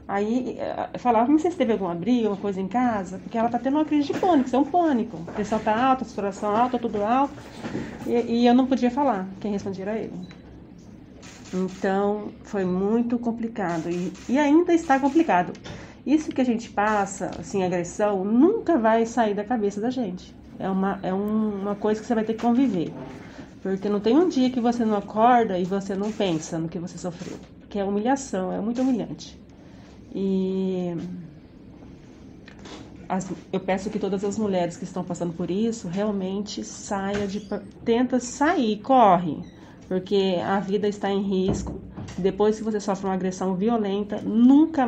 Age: 40-59